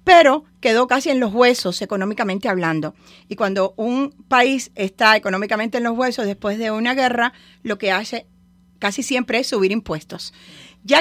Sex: female